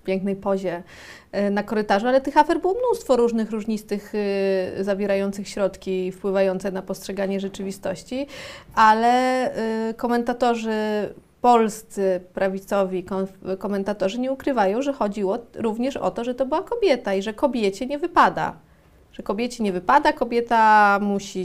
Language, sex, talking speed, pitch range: Polish, female, 125 wpm, 200-255 Hz